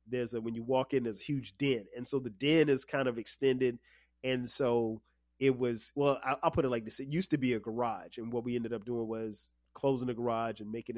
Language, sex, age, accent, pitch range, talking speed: English, male, 30-49, American, 110-135 Hz, 255 wpm